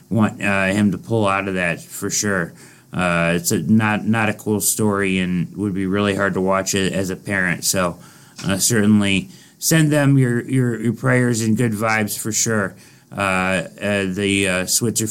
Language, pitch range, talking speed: English, 100-140 Hz, 190 wpm